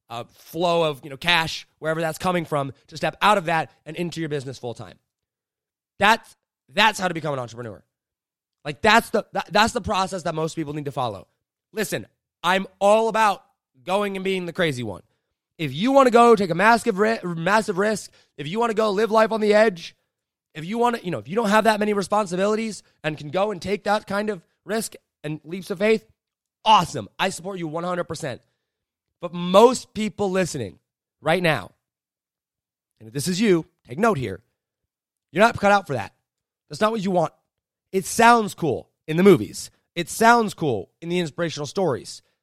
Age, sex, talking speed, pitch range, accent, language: 20-39, male, 200 wpm, 155-210 Hz, American, English